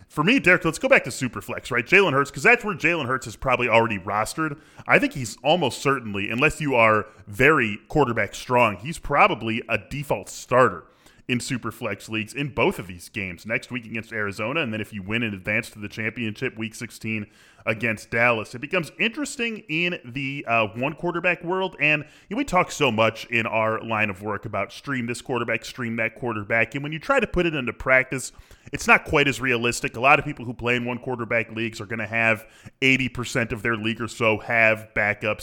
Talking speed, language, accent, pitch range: 215 wpm, English, American, 110-140 Hz